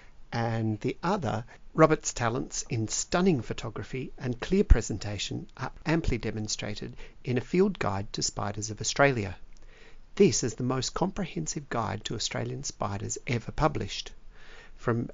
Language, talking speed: English, 135 wpm